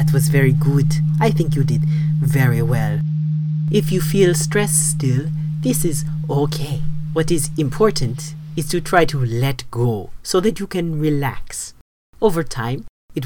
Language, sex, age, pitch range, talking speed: English, male, 40-59, 125-160 Hz, 160 wpm